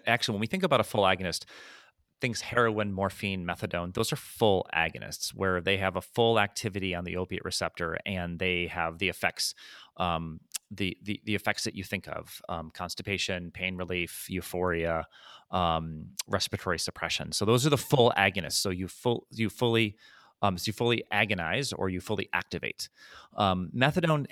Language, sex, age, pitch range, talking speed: English, male, 30-49, 90-110 Hz, 175 wpm